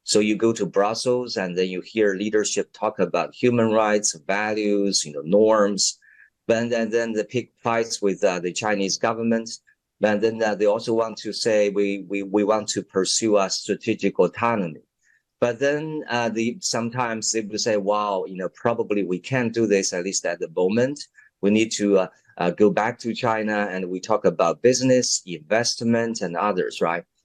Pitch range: 100-120 Hz